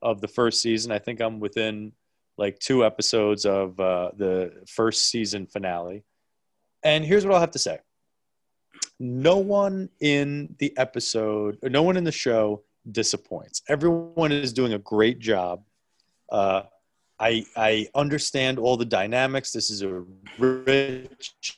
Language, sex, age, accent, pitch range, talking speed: English, male, 30-49, American, 110-135 Hz, 145 wpm